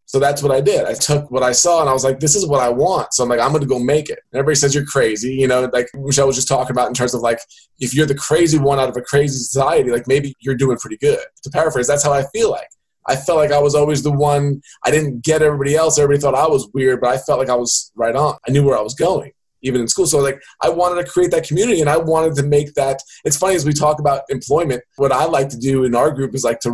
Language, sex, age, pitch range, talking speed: English, male, 20-39, 130-155 Hz, 305 wpm